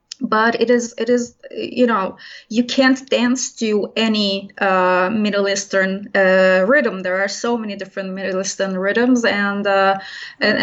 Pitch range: 195-230 Hz